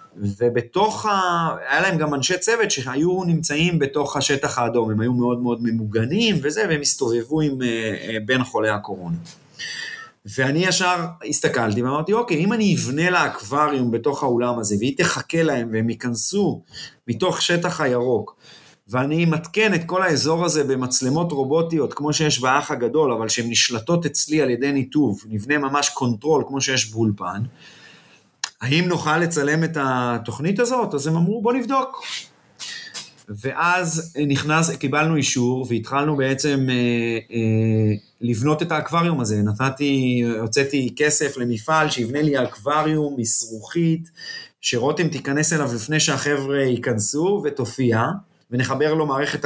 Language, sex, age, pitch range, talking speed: Hebrew, male, 30-49, 120-165 Hz, 135 wpm